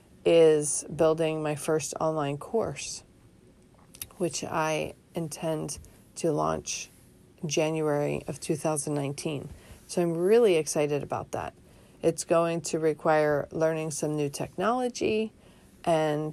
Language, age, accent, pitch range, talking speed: English, 40-59, American, 150-175 Hz, 105 wpm